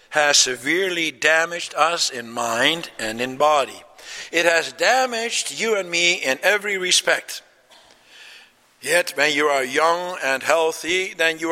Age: 60-79